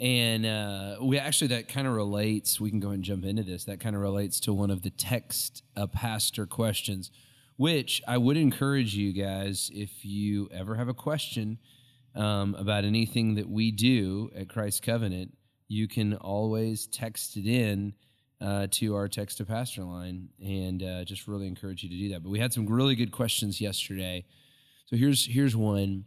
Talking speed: 195 wpm